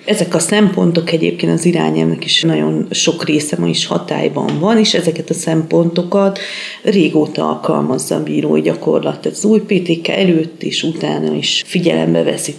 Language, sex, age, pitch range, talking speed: Hungarian, female, 40-59, 145-175 Hz, 155 wpm